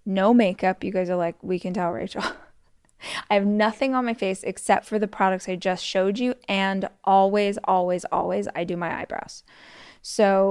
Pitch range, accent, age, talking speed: 185-215 Hz, American, 20-39, 190 wpm